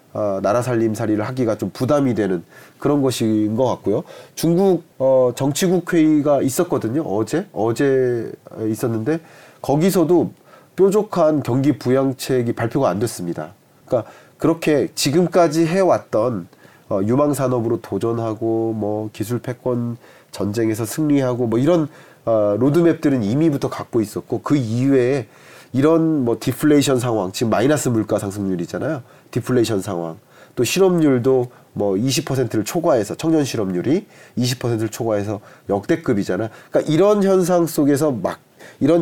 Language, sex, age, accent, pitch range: Korean, male, 30-49, native, 115-155 Hz